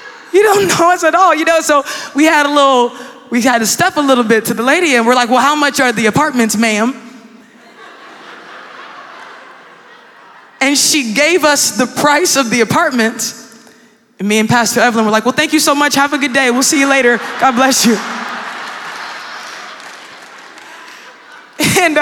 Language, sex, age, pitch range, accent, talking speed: English, female, 20-39, 235-300 Hz, American, 180 wpm